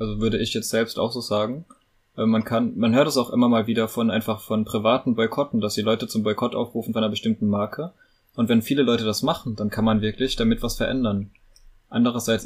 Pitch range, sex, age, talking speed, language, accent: 105-120 Hz, male, 20-39, 220 wpm, German, German